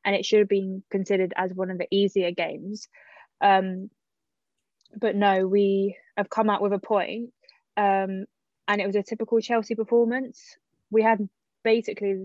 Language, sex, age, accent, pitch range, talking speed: English, female, 20-39, British, 195-220 Hz, 160 wpm